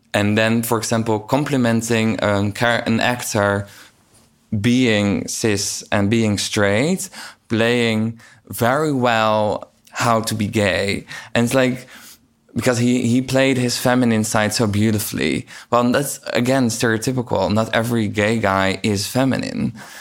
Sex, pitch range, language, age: male, 100-120 Hz, English, 20-39